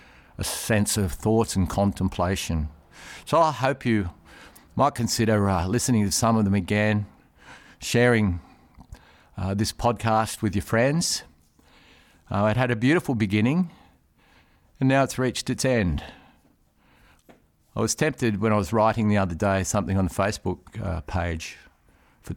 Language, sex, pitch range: English, male, 85-110 Hz